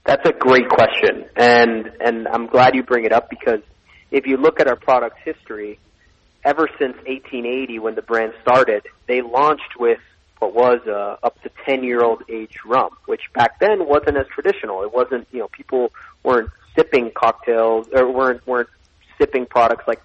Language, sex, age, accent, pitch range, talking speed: English, male, 30-49, American, 115-140 Hz, 175 wpm